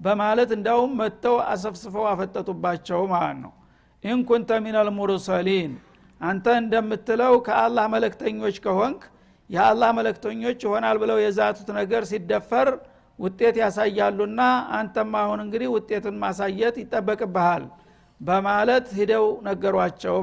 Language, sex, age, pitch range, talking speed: Amharic, male, 60-79, 190-230 Hz, 100 wpm